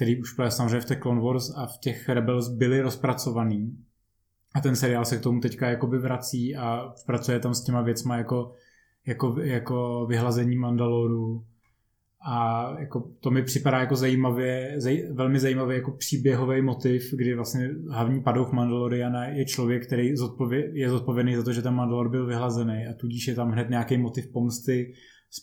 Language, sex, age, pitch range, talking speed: Czech, male, 20-39, 120-135 Hz, 170 wpm